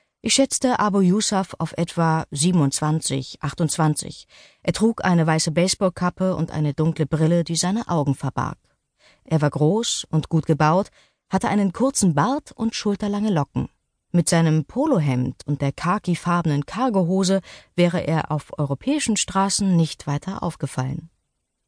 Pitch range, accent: 155-205 Hz, German